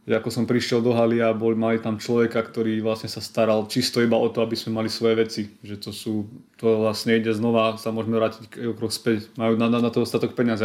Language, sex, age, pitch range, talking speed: Slovak, male, 20-39, 110-125 Hz, 240 wpm